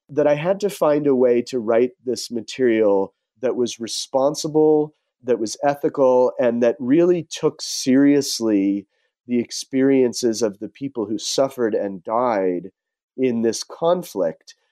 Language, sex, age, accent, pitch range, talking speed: English, male, 40-59, American, 115-145 Hz, 140 wpm